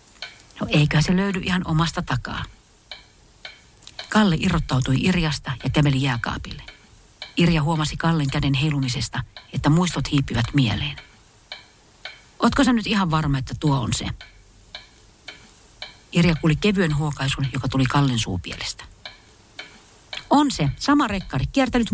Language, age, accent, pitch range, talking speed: Finnish, 50-69, native, 110-165 Hz, 120 wpm